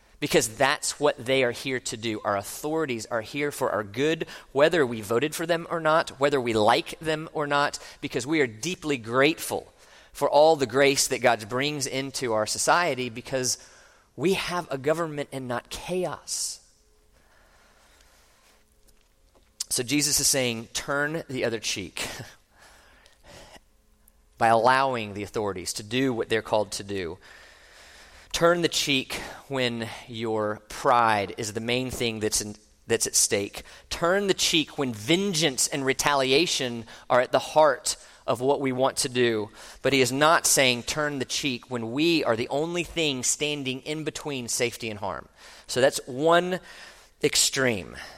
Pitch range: 120-160 Hz